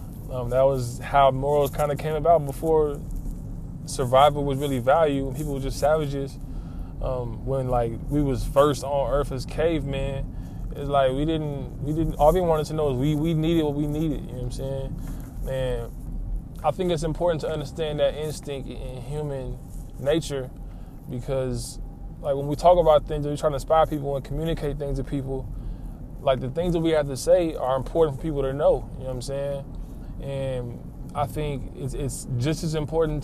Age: 20-39